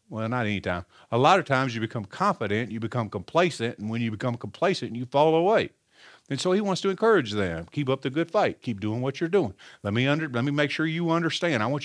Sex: male